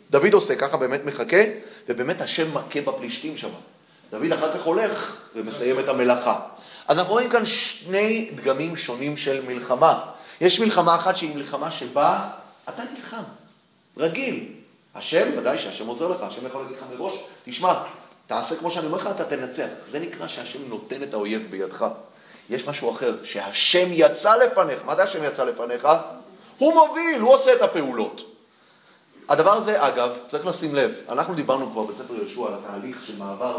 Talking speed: 155 wpm